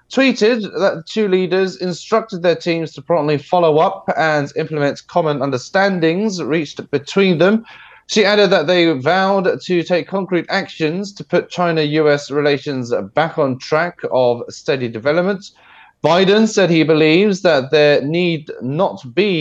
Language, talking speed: English, 145 wpm